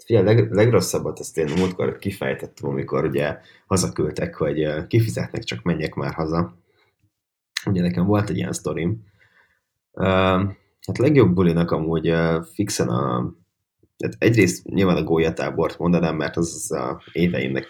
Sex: male